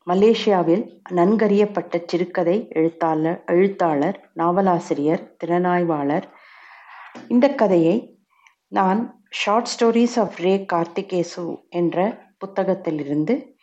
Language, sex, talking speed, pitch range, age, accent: Tamil, female, 70 wpm, 170-225 Hz, 60-79, native